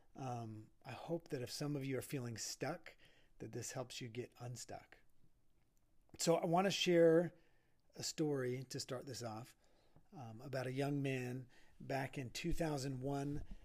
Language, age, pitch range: English, 40-59, 120-150 Hz